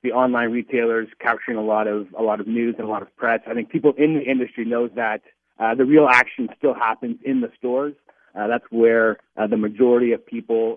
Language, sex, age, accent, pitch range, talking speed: English, male, 40-59, American, 105-130 Hz, 230 wpm